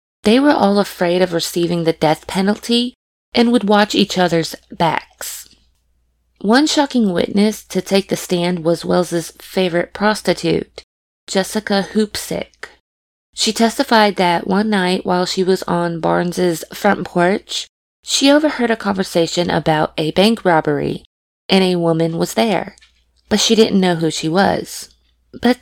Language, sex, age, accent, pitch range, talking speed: English, female, 20-39, American, 170-215 Hz, 145 wpm